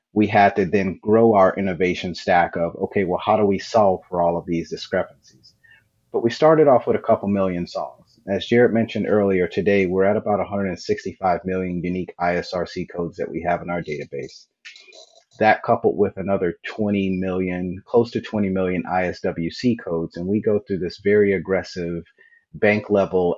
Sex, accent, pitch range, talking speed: male, American, 90-105 Hz, 175 wpm